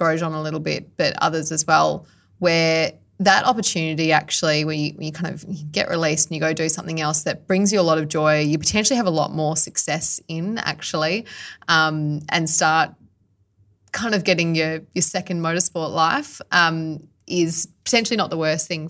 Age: 20-39